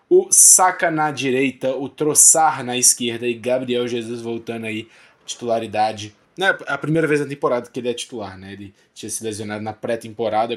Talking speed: 175 wpm